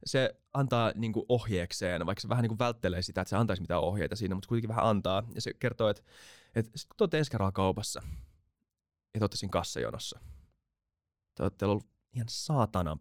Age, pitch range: 20-39, 90-120 Hz